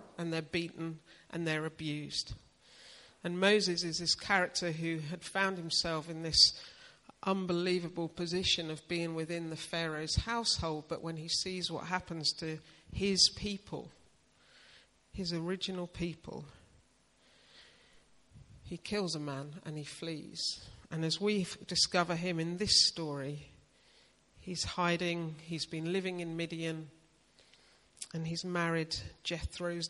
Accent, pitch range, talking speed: British, 160-190 Hz, 125 wpm